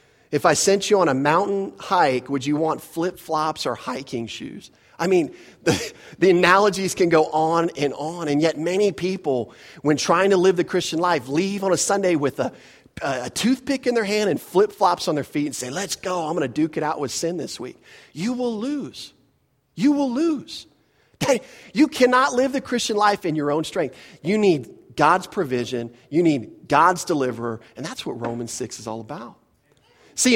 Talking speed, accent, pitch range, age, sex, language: 200 wpm, American, 145-195 Hz, 40-59, male, English